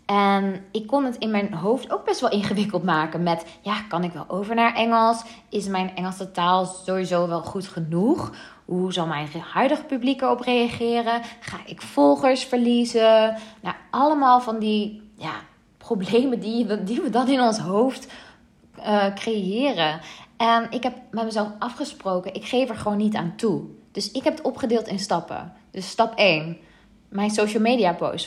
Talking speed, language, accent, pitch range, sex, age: 170 wpm, Dutch, Dutch, 185-240 Hz, female, 20-39